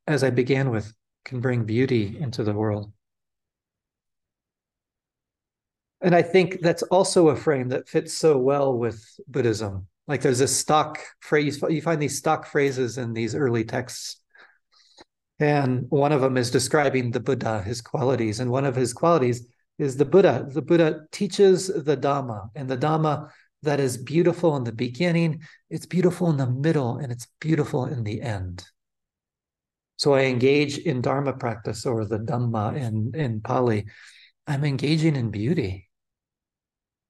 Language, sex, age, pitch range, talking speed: English, male, 40-59, 110-145 Hz, 155 wpm